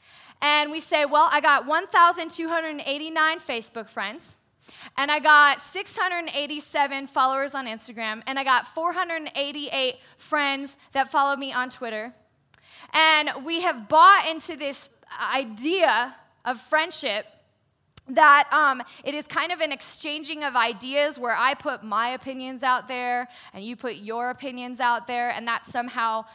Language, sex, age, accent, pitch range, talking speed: English, female, 10-29, American, 250-310 Hz, 140 wpm